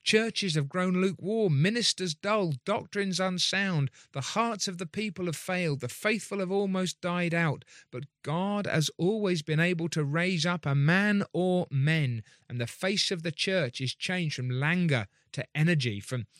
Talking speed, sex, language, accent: 170 wpm, male, English, British